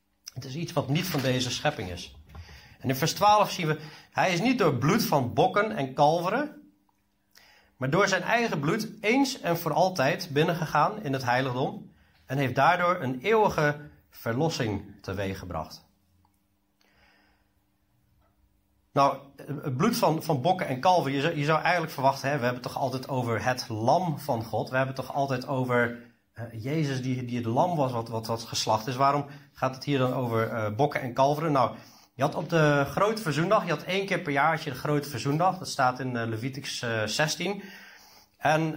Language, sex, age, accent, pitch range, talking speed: Dutch, male, 40-59, Dutch, 120-165 Hz, 185 wpm